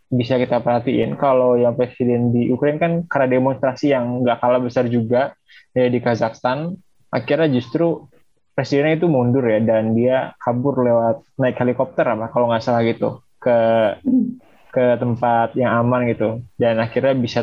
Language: Indonesian